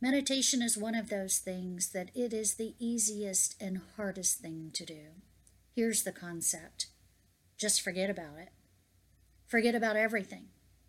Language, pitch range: English, 185-270 Hz